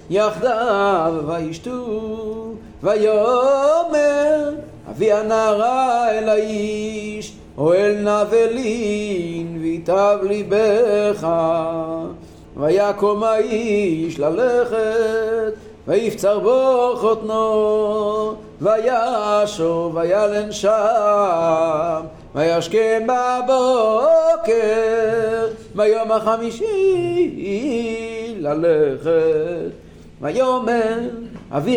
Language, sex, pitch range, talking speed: Hebrew, male, 205-235 Hz, 50 wpm